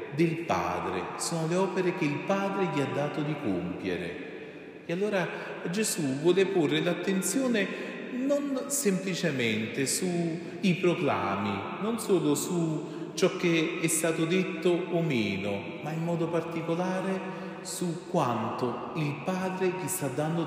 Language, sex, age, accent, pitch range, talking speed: Italian, male, 40-59, native, 130-190 Hz, 130 wpm